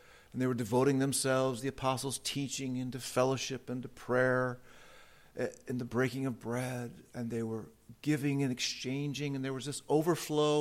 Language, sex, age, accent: English, male, 50-69, American